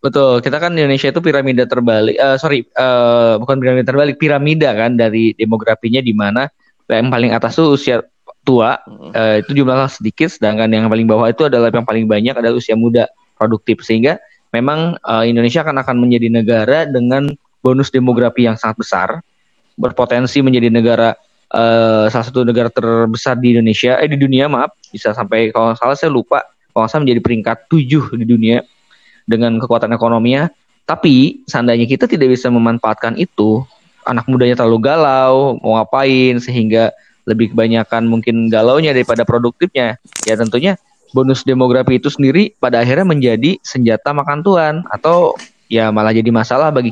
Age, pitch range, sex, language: 20-39, 115-135 Hz, male, Indonesian